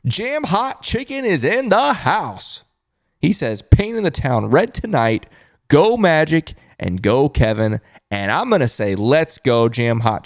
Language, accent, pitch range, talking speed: English, American, 115-160 Hz, 170 wpm